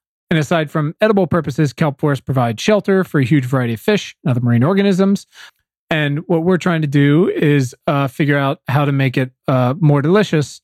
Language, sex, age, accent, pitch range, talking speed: English, male, 30-49, American, 135-175 Hz, 195 wpm